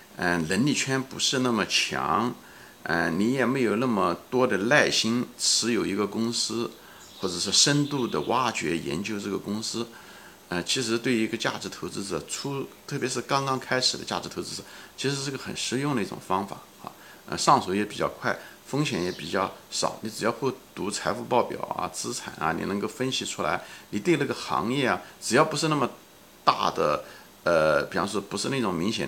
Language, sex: Chinese, male